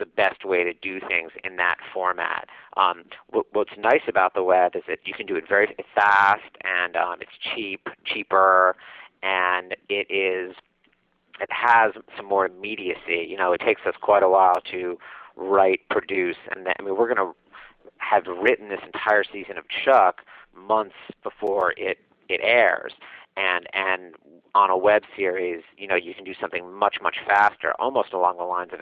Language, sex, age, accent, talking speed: English, male, 40-59, American, 180 wpm